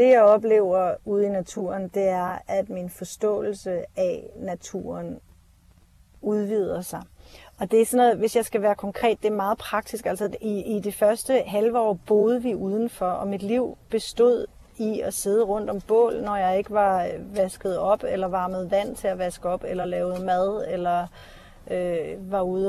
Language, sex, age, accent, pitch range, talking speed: Danish, female, 30-49, native, 195-245 Hz, 185 wpm